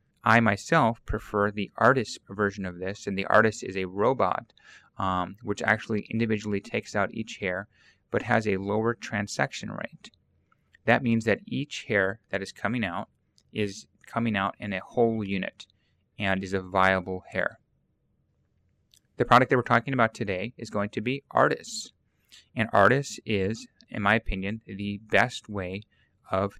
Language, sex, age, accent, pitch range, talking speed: English, male, 30-49, American, 100-115 Hz, 160 wpm